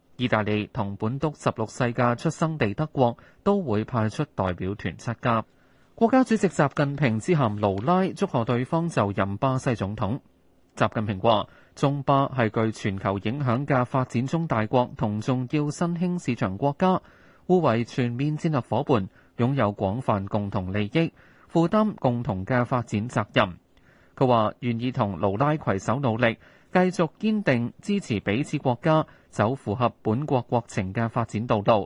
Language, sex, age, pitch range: Chinese, male, 20-39, 110-145 Hz